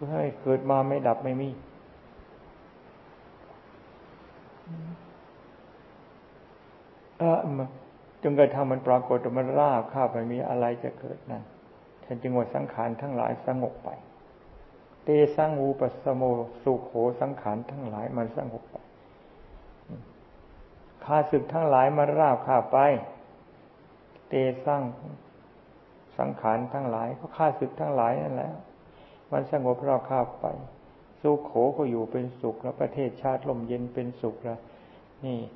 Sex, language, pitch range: male, Thai, 120-135 Hz